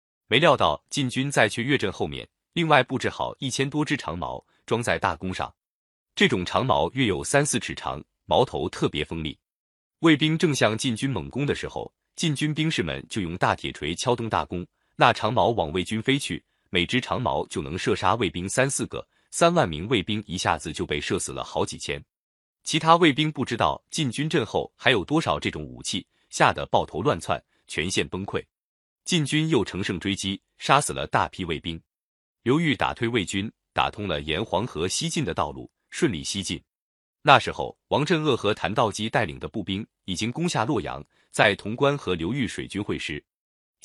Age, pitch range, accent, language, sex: 30-49, 90-140 Hz, native, Chinese, male